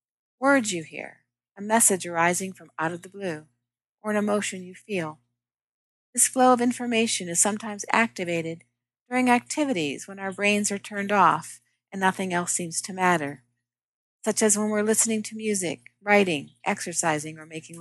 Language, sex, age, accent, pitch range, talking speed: English, female, 40-59, American, 160-210 Hz, 160 wpm